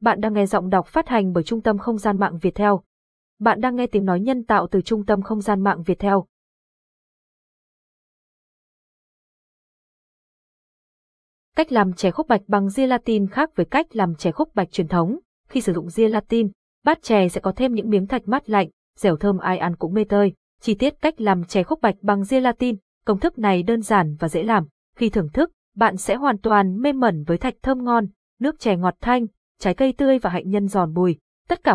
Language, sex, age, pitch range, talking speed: Vietnamese, female, 20-39, 190-240 Hz, 210 wpm